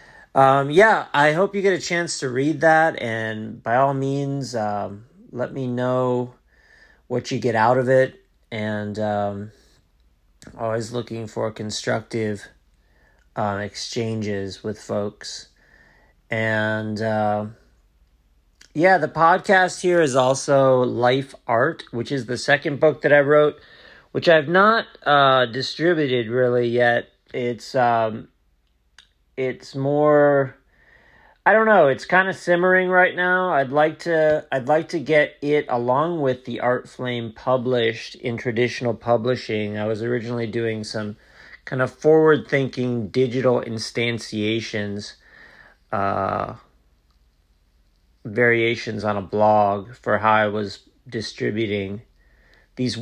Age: 40-59